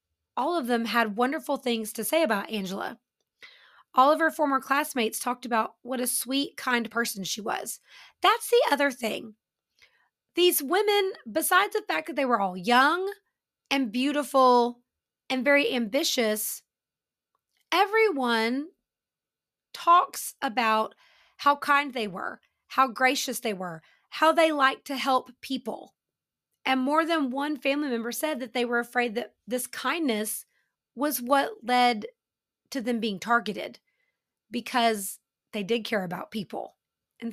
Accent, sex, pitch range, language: American, female, 220-280 Hz, English